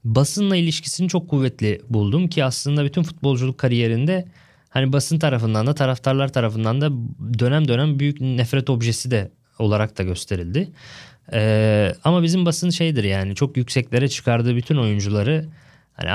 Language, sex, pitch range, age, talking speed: Turkish, male, 115-155 Hz, 20-39, 140 wpm